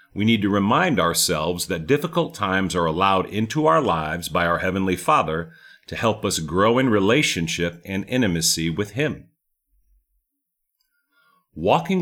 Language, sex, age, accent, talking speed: English, male, 50-69, American, 140 wpm